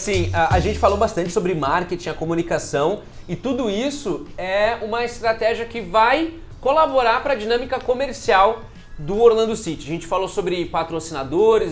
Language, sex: Portuguese, male